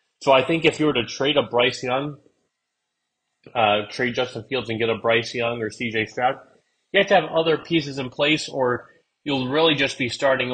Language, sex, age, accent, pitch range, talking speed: English, male, 30-49, American, 115-135 Hz, 210 wpm